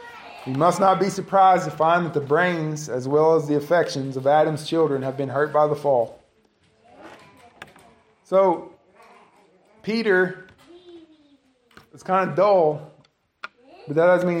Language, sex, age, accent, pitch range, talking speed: English, male, 20-39, American, 155-230 Hz, 140 wpm